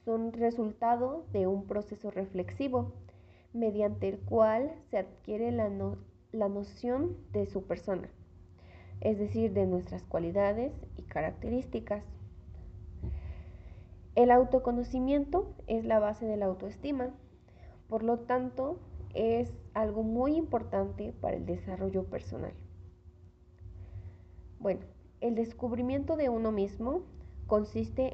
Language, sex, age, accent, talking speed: Spanish, female, 30-49, Mexican, 105 wpm